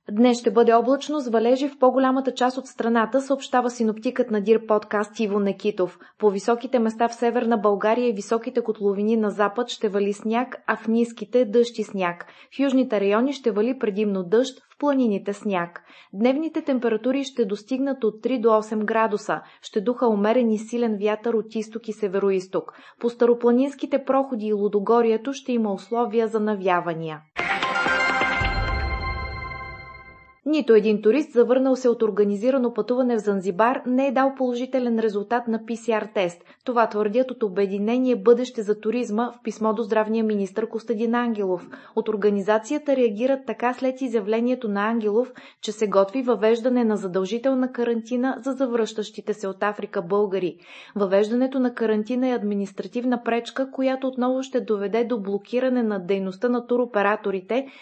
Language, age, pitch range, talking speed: Bulgarian, 20-39, 210-250 Hz, 150 wpm